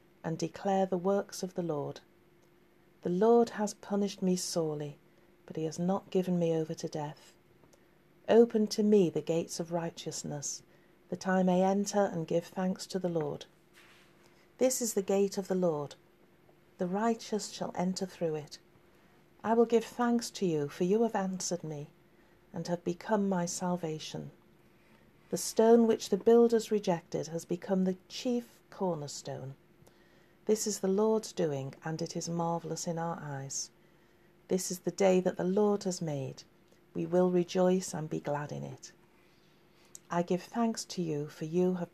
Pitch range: 170-195 Hz